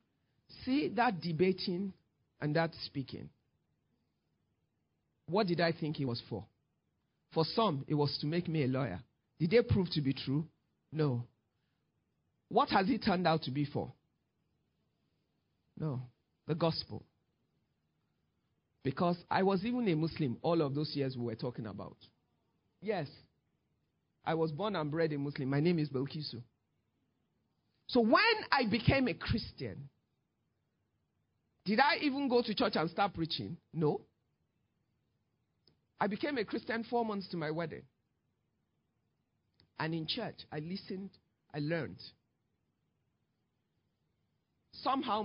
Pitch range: 140-185 Hz